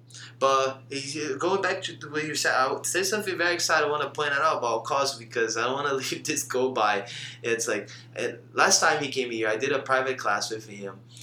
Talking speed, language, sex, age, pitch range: 235 wpm, English, male, 20-39, 115-135 Hz